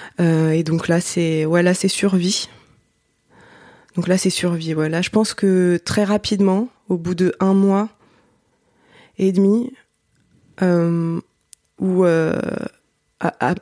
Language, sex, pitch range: French, female, 165-190 Hz